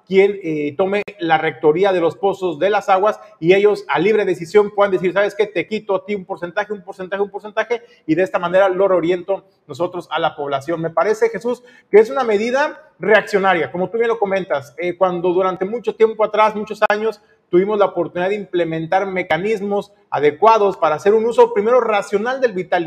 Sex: male